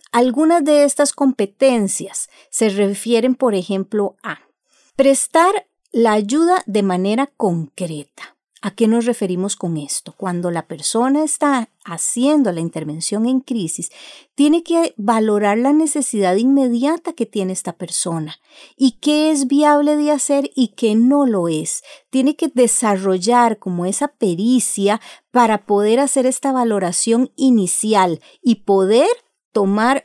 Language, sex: Spanish, female